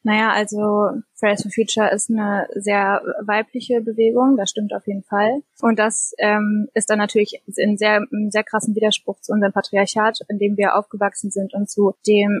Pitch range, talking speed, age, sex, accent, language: 205-225 Hz, 185 wpm, 20-39, female, German, German